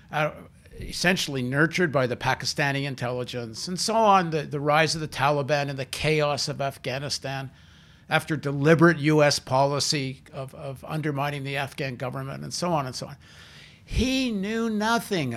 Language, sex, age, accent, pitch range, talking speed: English, male, 60-79, American, 140-175 Hz, 150 wpm